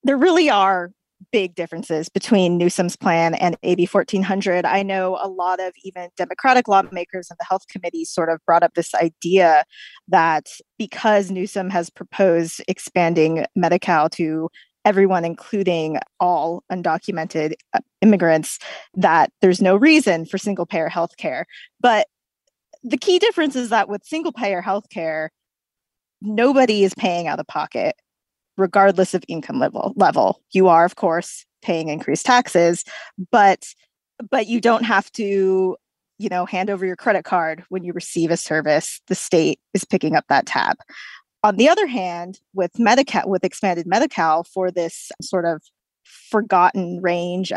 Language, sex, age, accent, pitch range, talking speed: English, female, 20-39, American, 170-205 Hz, 150 wpm